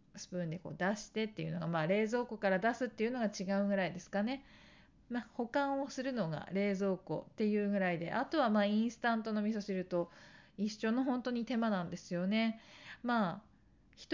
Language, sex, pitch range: Japanese, female, 180-235 Hz